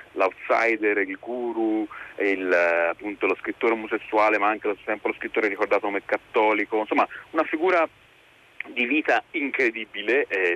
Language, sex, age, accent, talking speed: Italian, male, 40-59, native, 135 wpm